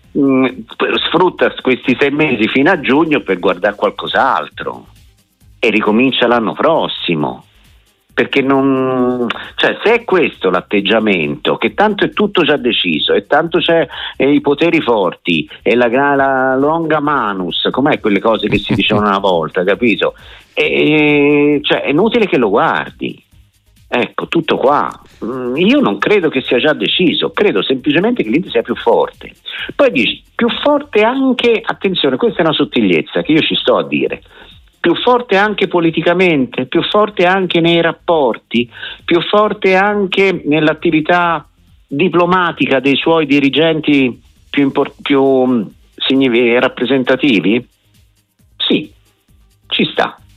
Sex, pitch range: male, 125-190 Hz